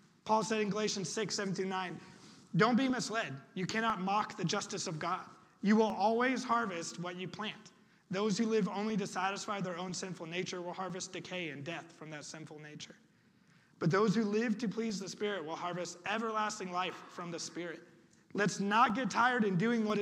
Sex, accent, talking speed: male, American, 190 wpm